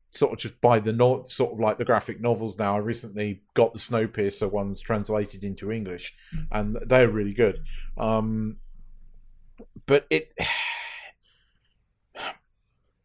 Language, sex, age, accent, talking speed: English, male, 40-59, British, 140 wpm